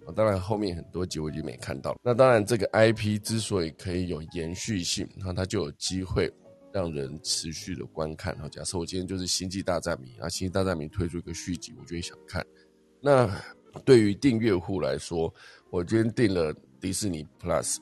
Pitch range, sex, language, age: 85-105 Hz, male, Chinese, 20-39